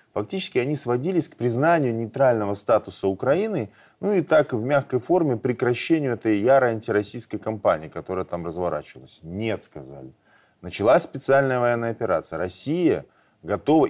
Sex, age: male, 20-39